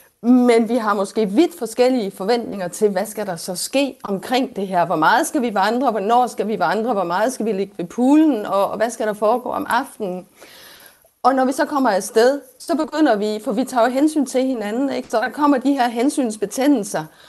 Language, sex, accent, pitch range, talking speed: Danish, female, native, 195-255 Hz, 210 wpm